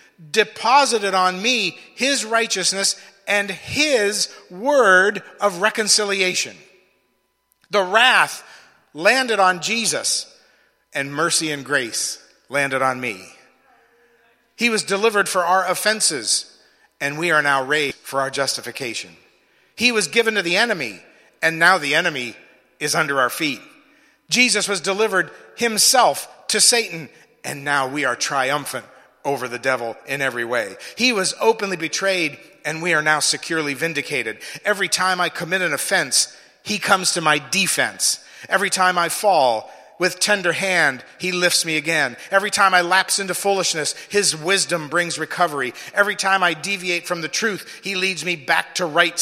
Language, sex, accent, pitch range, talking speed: English, male, American, 165-210 Hz, 150 wpm